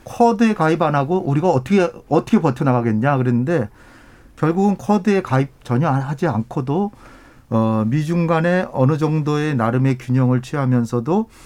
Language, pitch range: Korean, 125-180 Hz